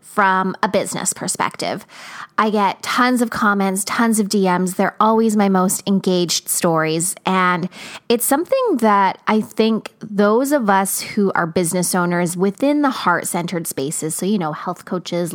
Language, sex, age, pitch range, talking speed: English, female, 20-39, 180-235 Hz, 160 wpm